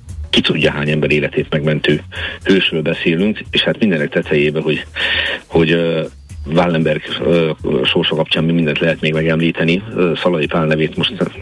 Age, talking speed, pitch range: 50-69, 160 wpm, 80-85 Hz